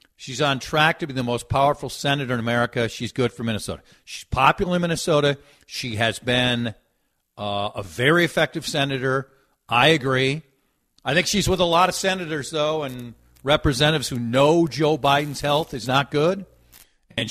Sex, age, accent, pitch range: male, 50-69, American, 95-145 Hz